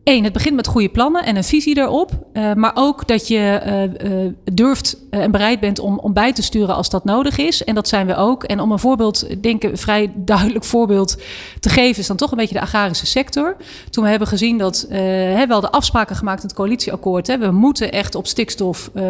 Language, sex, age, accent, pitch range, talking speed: Dutch, female, 40-59, Dutch, 195-245 Hz, 240 wpm